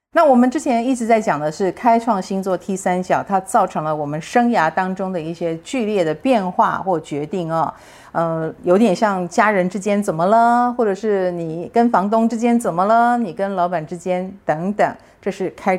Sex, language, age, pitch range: female, Chinese, 50-69, 170-230 Hz